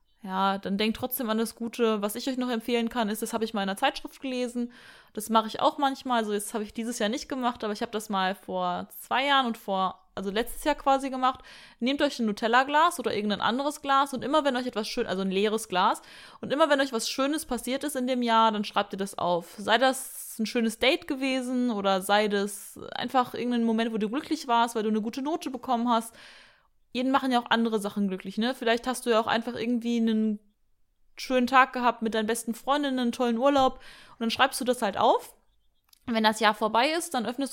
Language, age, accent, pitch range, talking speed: German, 20-39, German, 210-255 Hz, 235 wpm